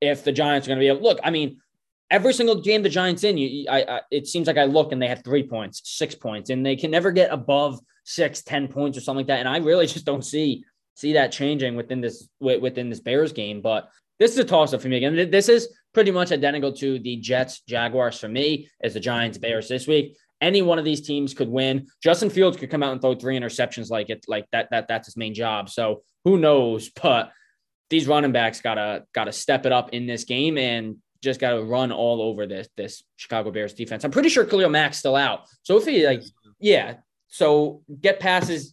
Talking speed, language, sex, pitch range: 240 wpm, English, male, 125-155 Hz